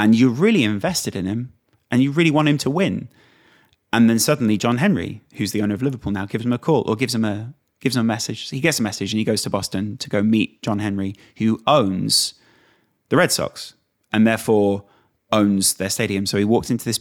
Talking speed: 235 wpm